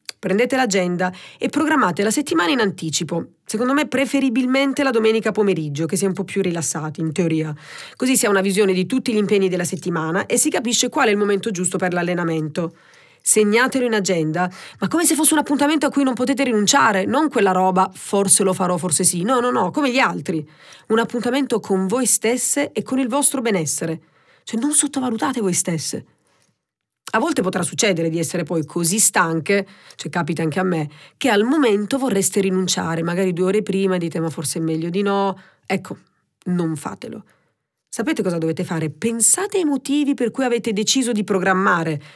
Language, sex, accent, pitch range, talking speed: Italian, female, native, 175-255 Hz, 190 wpm